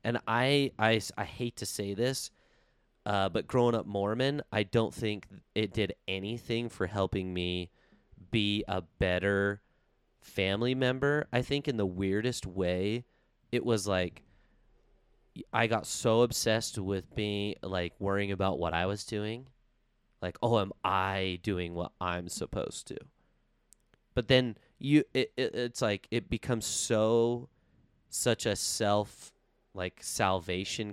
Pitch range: 95-120 Hz